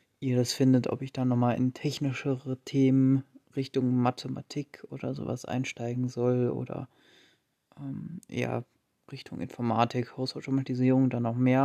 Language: German